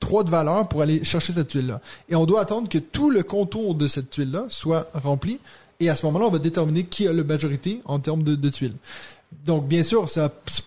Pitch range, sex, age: 150-185 Hz, male, 20-39